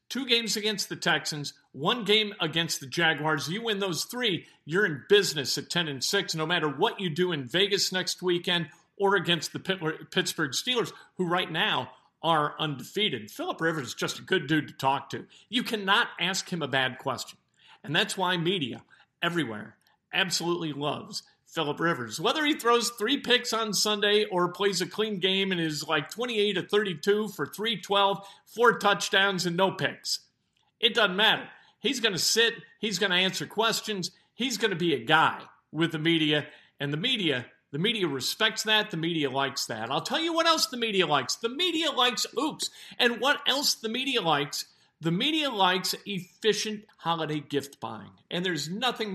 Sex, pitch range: male, 155-215 Hz